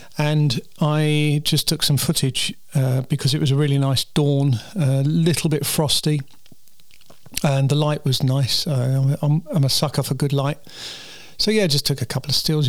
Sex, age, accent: male, 40-59, British